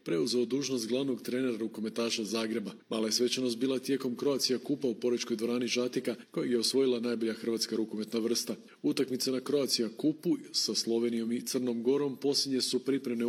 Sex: male